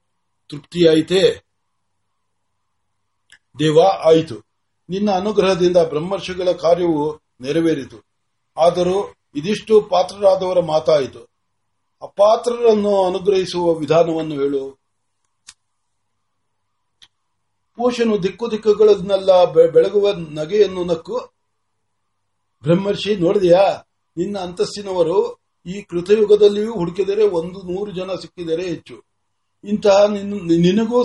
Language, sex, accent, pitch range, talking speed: Marathi, male, native, 140-205 Hz, 45 wpm